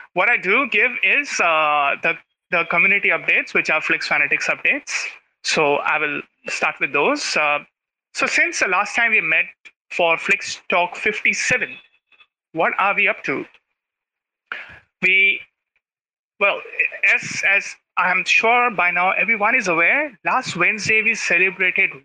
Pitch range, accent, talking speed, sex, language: 175-220 Hz, Indian, 145 wpm, male, English